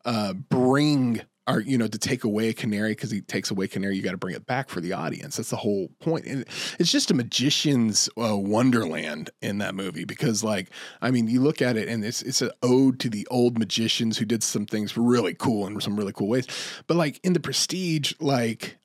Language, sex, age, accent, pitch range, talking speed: English, male, 30-49, American, 110-135 Hz, 230 wpm